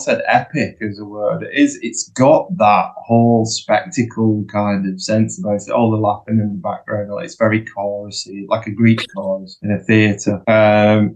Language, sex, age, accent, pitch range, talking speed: English, male, 20-39, British, 105-125 Hz, 200 wpm